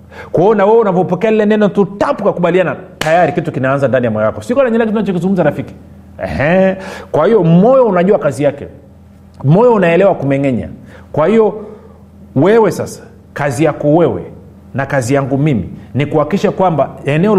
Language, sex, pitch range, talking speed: Swahili, male, 130-180 Hz, 145 wpm